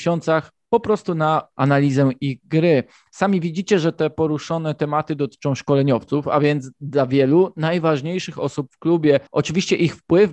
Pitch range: 130-170 Hz